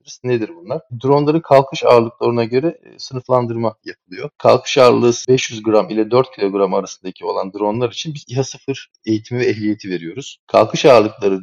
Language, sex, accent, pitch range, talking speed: Turkish, male, native, 105-140 Hz, 145 wpm